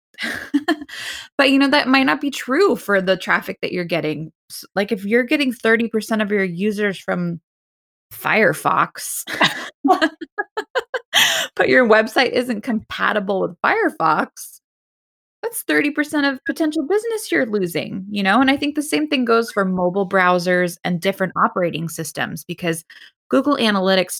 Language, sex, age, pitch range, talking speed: English, female, 20-39, 170-240 Hz, 140 wpm